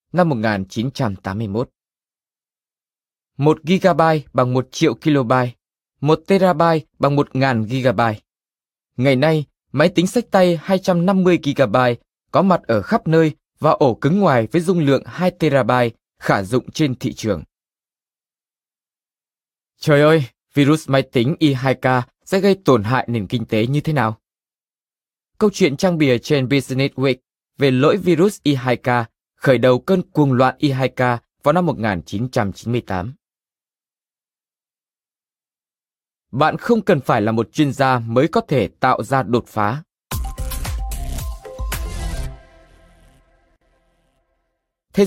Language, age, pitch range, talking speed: Vietnamese, 20-39, 120-160 Hz, 120 wpm